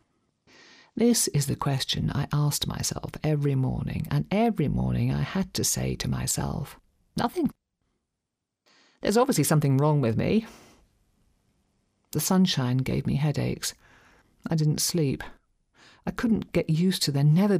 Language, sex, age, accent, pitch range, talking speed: English, female, 50-69, British, 130-170 Hz, 135 wpm